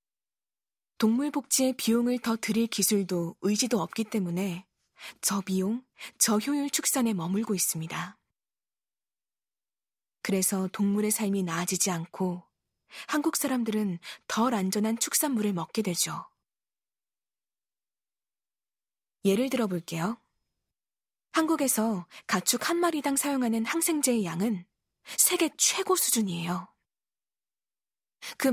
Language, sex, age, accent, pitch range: Korean, female, 20-39, native, 190-255 Hz